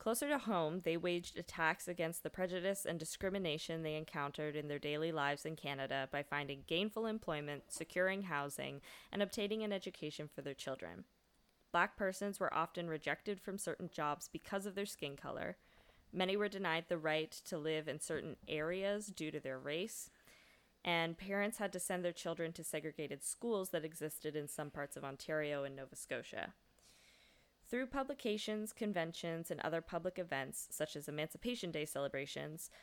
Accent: American